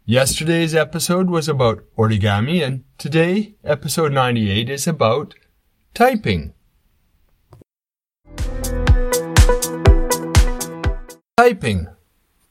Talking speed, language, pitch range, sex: 60 wpm, English, 95-135 Hz, male